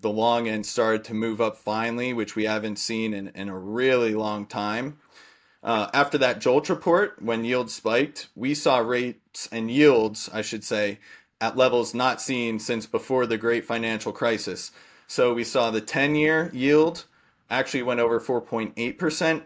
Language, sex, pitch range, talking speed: English, male, 110-125 Hz, 170 wpm